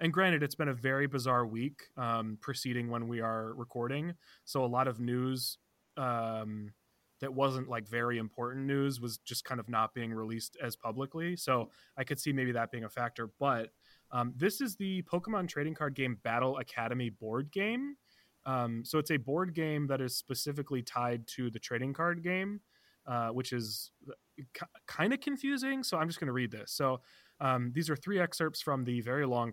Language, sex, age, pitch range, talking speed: English, male, 20-39, 120-160 Hz, 195 wpm